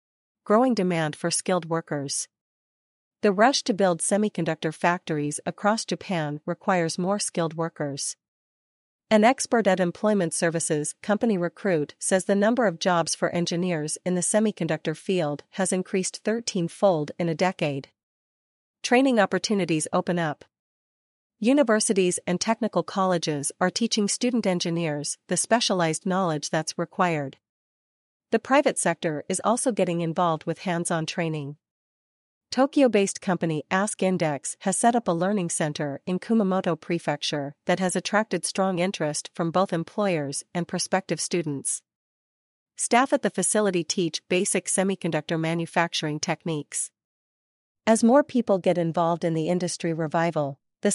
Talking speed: 135 wpm